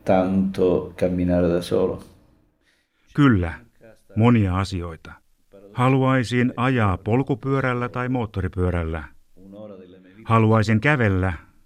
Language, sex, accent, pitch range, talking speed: Finnish, male, native, 90-115 Hz, 50 wpm